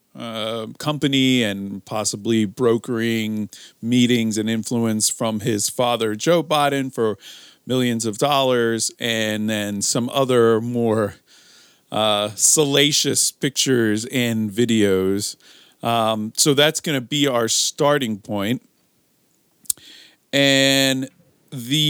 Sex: male